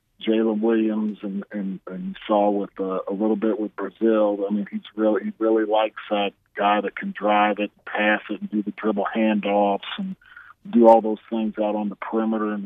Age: 40-59